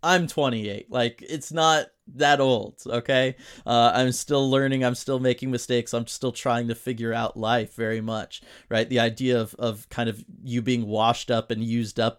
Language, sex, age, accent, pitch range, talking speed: English, male, 30-49, American, 115-130 Hz, 190 wpm